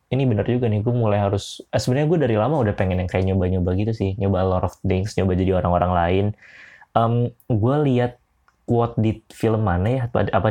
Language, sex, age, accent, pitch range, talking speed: Indonesian, male, 20-39, native, 100-125 Hz, 210 wpm